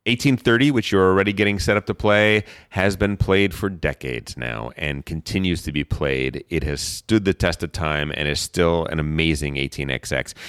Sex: male